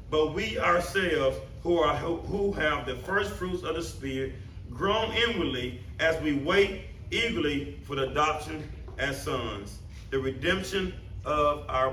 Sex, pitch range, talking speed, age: male, 100-150 Hz, 135 wpm, 30-49